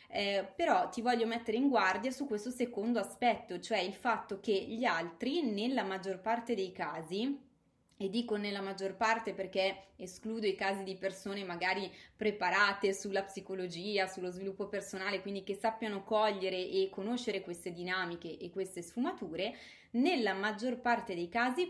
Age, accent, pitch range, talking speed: 20-39, native, 190-240 Hz, 155 wpm